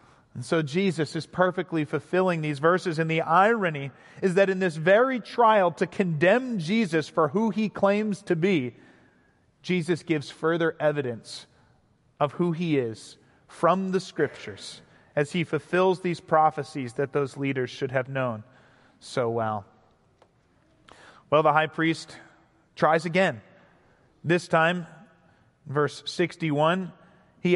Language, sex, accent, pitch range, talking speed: English, male, American, 150-190 Hz, 135 wpm